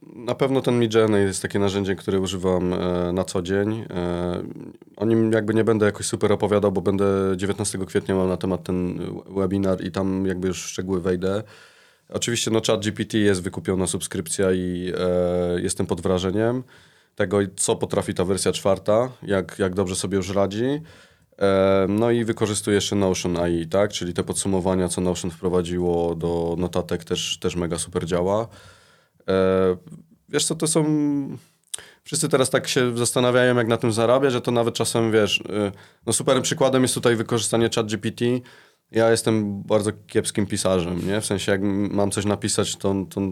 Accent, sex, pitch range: native, male, 95-110 Hz